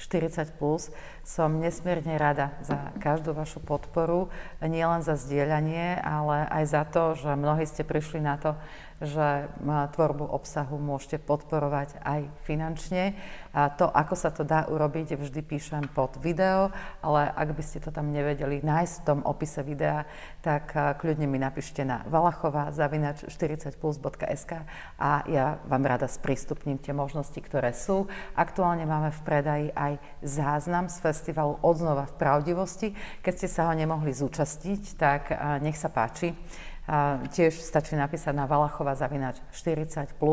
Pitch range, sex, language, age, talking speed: 145-160 Hz, female, Slovak, 40-59, 140 wpm